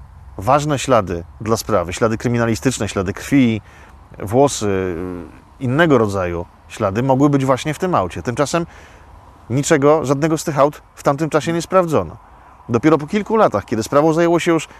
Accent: native